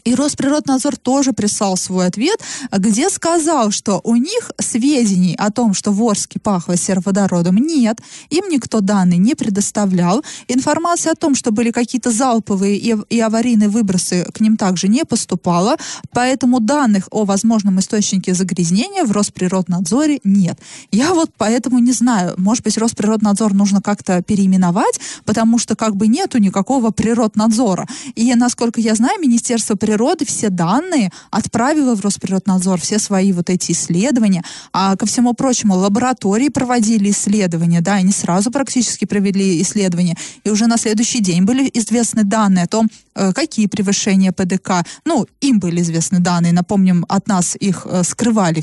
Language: Russian